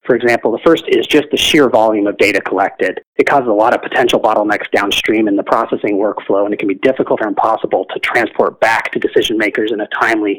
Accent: American